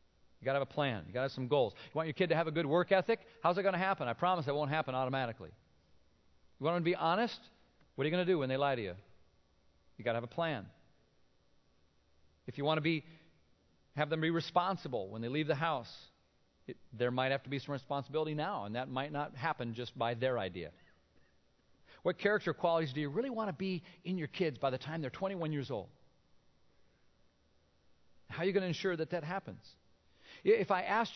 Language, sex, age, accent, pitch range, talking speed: English, male, 40-59, American, 105-175 Hz, 225 wpm